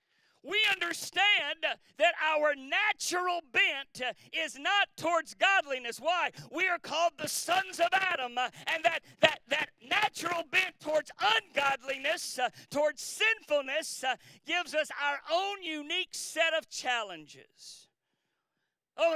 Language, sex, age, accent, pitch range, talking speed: English, male, 50-69, American, 285-350 Hz, 120 wpm